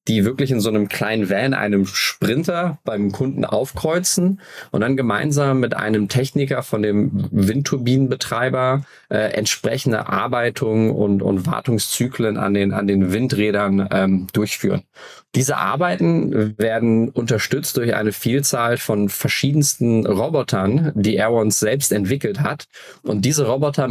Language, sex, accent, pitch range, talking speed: German, male, German, 105-135 Hz, 130 wpm